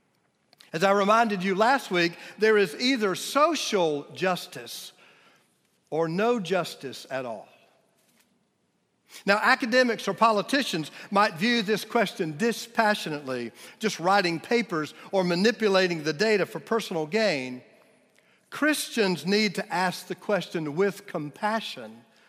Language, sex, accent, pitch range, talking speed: English, male, American, 175-235 Hz, 115 wpm